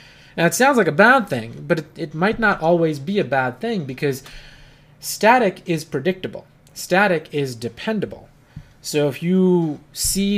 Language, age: English, 20-39